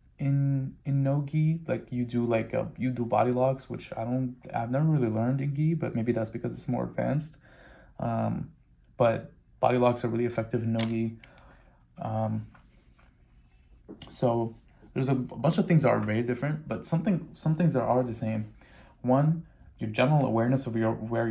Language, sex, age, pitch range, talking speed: English, male, 20-39, 110-130 Hz, 190 wpm